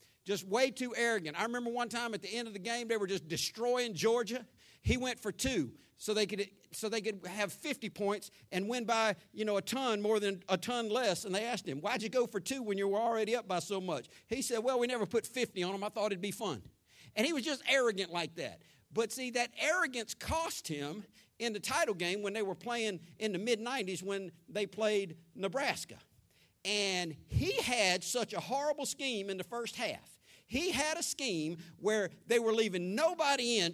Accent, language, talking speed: American, English, 220 wpm